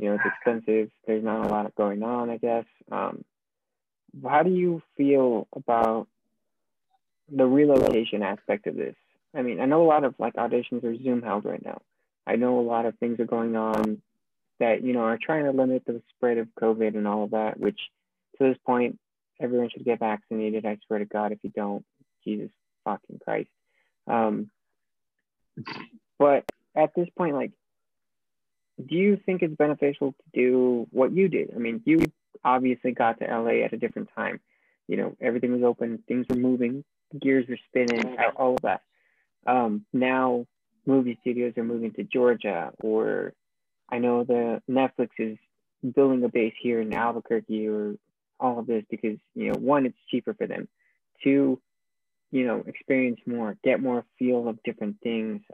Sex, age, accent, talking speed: male, 20-39, American, 175 wpm